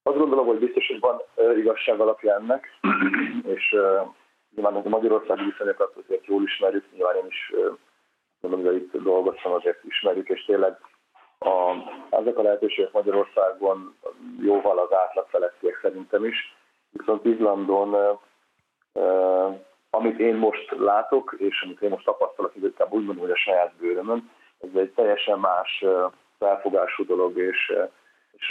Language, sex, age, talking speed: Hungarian, male, 40-59, 145 wpm